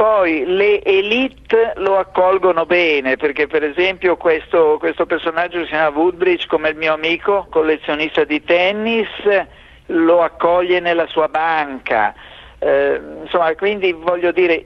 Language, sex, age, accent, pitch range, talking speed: Italian, male, 50-69, native, 155-225 Hz, 130 wpm